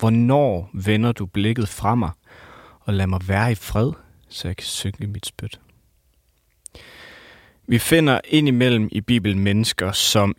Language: English